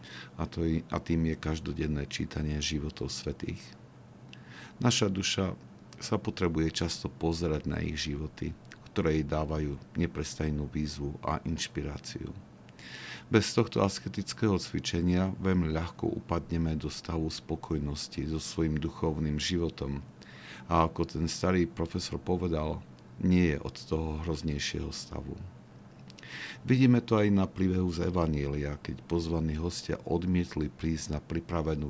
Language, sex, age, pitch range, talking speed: Slovak, male, 50-69, 75-90 Hz, 120 wpm